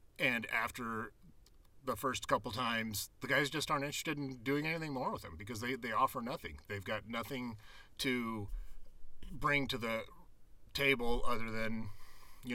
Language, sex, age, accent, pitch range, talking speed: English, male, 40-59, American, 100-130 Hz, 160 wpm